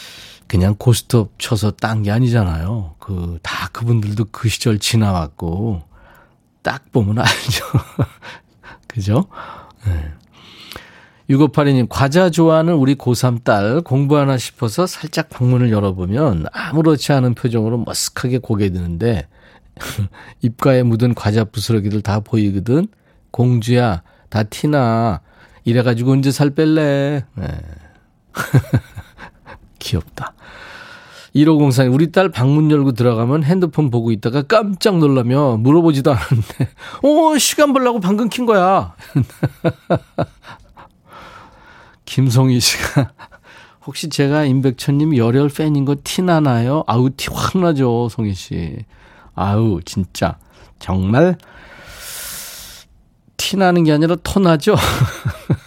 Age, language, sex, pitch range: 40-59, Korean, male, 110-155 Hz